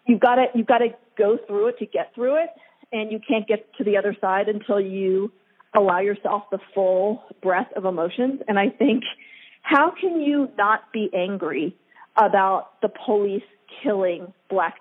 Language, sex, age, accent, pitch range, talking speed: English, female, 40-59, American, 205-270 Hz, 180 wpm